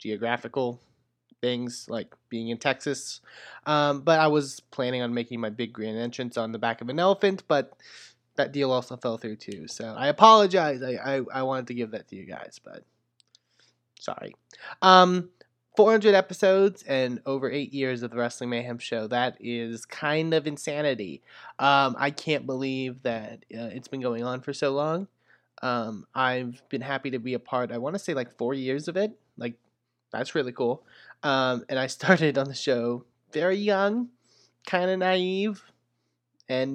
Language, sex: English, male